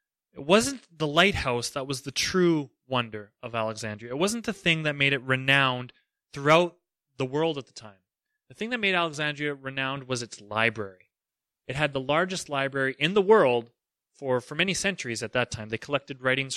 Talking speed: 190 wpm